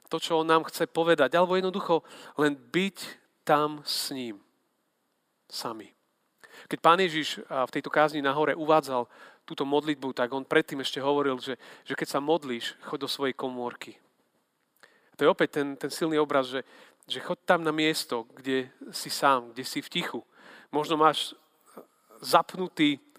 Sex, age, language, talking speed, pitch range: male, 40-59, Slovak, 160 wpm, 130-155 Hz